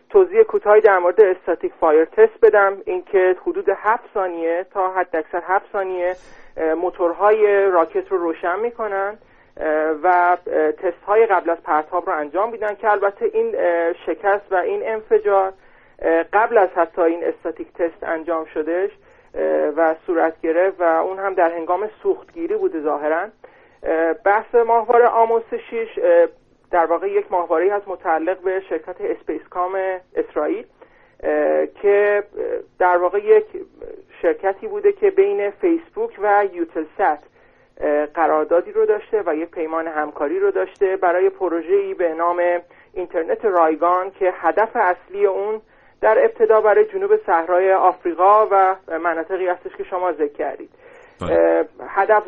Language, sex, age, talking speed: Persian, male, 40-59, 130 wpm